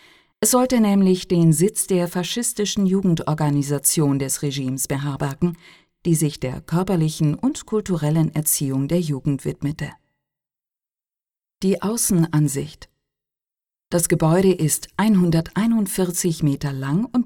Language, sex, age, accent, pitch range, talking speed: Italian, female, 50-69, German, 145-195 Hz, 105 wpm